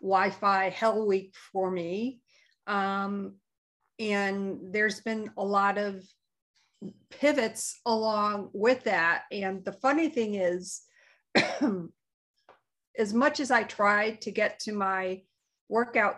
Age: 50-69